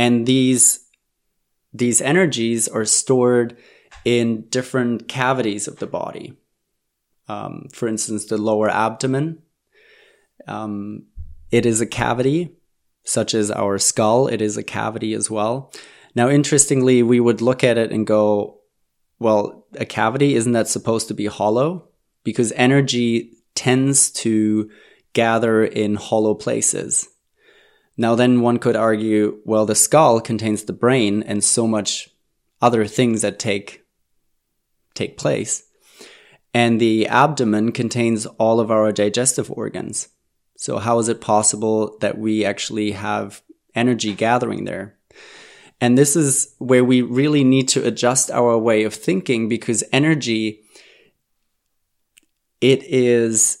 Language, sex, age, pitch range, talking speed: English, male, 20-39, 110-125 Hz, 130 wpm